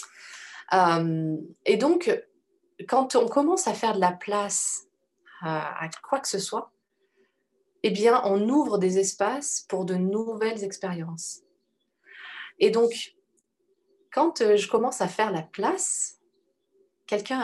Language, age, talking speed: French, 20-39, 125 wpm